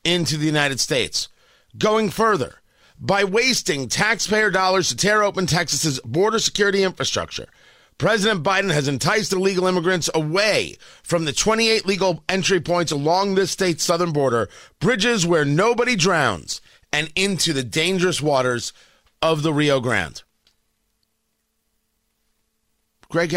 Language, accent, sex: English, American, male